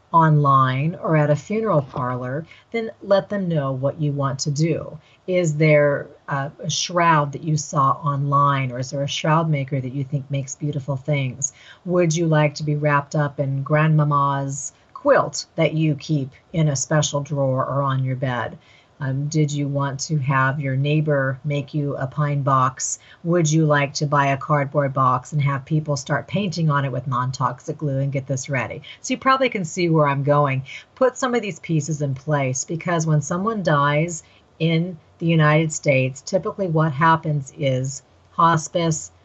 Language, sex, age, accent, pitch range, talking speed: English, female, 40-59, American, 140-170 Hz, 180 wpm